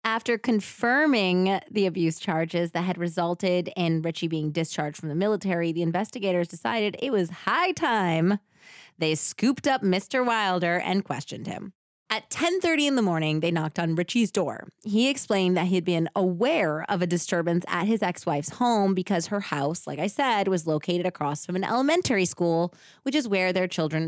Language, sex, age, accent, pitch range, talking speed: English, female, 20-39, American, 165-225 Hz, 180 wpm